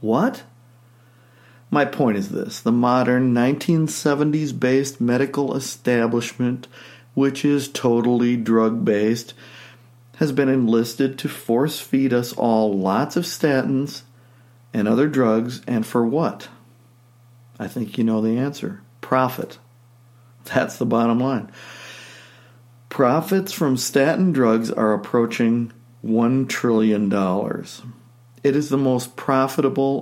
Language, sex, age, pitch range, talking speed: English, male, 50-69, 120-135 Hz, 110 wpm